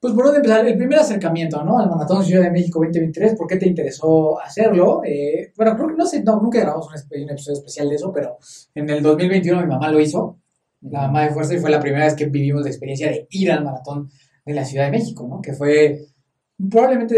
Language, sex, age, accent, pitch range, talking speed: Spanish, male, 20-39, Mexican, 145-185 Hz, 240 wpm